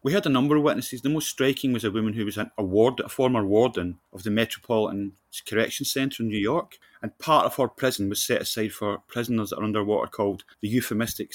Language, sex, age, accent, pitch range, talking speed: English, male, 30-49, British, 100-120 Hz, 225 wpm